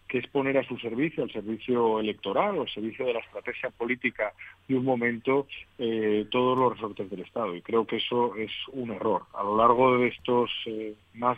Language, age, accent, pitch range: Spanish, 40-59, Spanish, 105-120 Hz